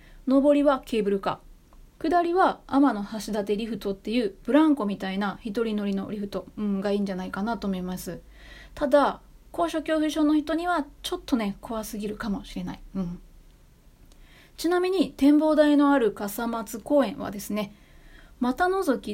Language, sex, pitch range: Japanese, female, 205-280 Hz